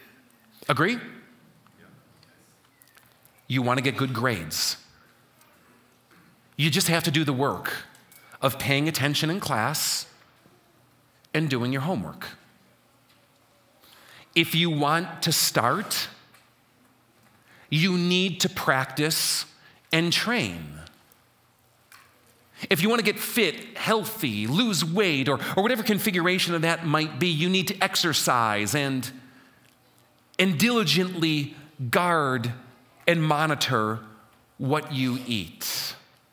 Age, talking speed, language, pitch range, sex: 40-59, 105 wpm, English, 120-165 Hz, male